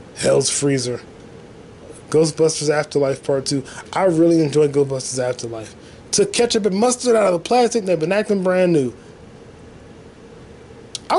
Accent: American